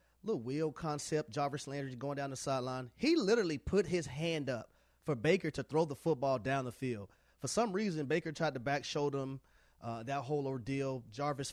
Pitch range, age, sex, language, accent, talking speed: 130-165 Hz, 30-49, male, English, American, 200 wpm